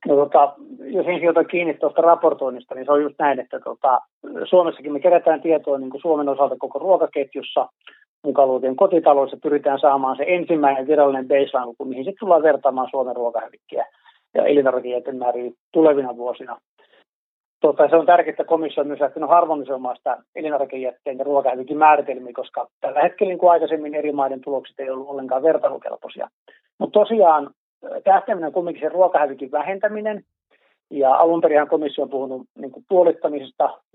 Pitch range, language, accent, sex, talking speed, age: 135-165 Hz, Finnish, native, male, 155 wpm, 30-49